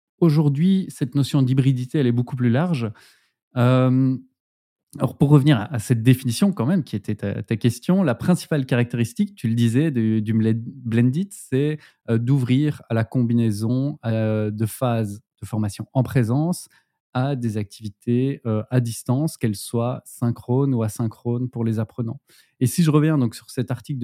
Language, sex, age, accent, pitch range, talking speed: French, male, 20-39, French, 115-145 Hz, 160 wpm